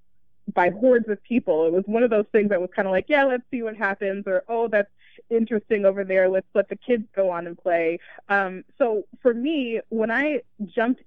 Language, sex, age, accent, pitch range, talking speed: English, female, 20-39, American, 185-220 Hz, 220 wpm